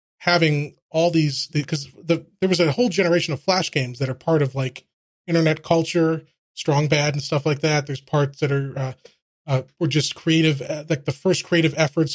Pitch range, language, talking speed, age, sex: 140-160 Hz, English, 205 wpm, 30-49, male